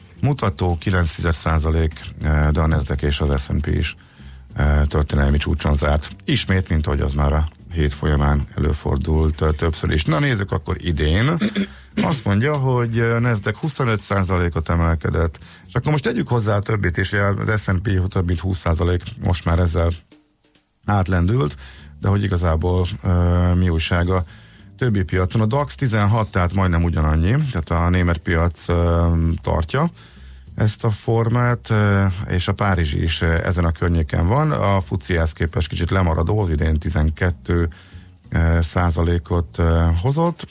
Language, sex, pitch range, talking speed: Hungarian, male, 80-100 Hz, 135 wpm